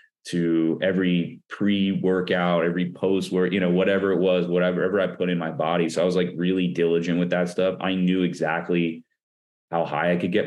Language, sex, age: English, male, 30-49